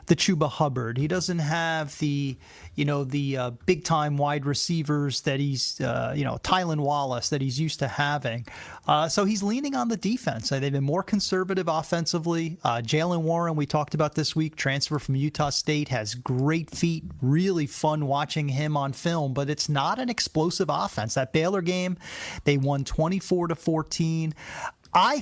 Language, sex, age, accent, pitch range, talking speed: English, male, 30-49, American, 140-180 Hz, 180 wpm